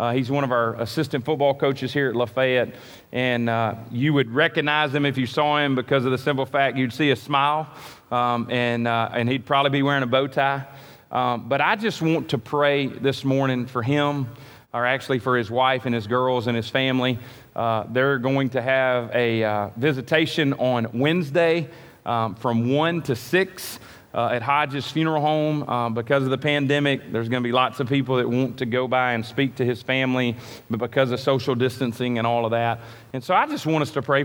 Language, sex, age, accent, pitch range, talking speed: English, male, 30-49, American, 125-150 Hz, 215 wpm